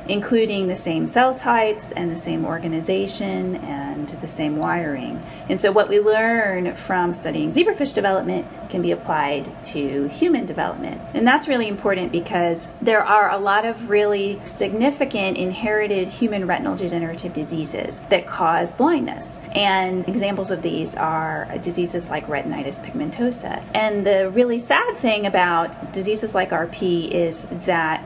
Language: English